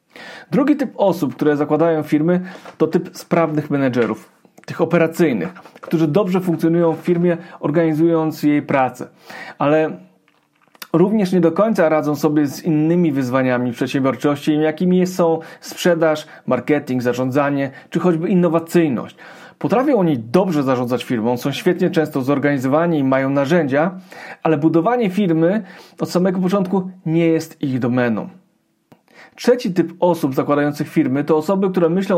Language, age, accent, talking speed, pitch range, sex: Polish, 40-59, native, 130 wpm, 150-175 Hz, male